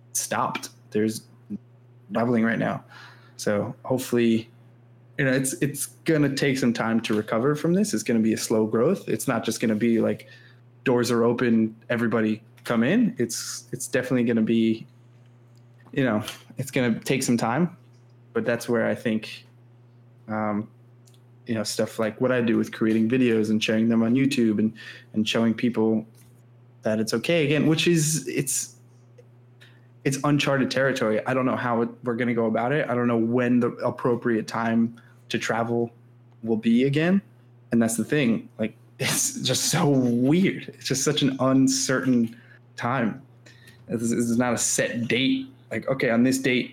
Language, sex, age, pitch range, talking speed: English, male, 20-39, 115-125 Hz, 170 wpm